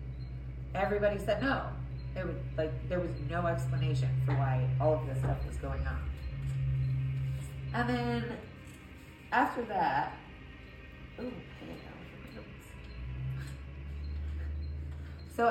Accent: American